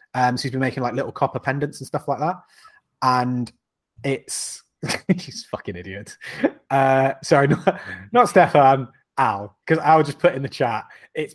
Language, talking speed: English, 170 wpm